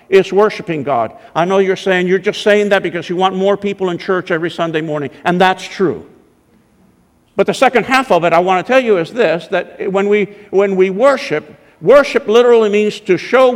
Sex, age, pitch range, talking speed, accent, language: male, 50-69, 175-215 Hz, 215 wpm, American, English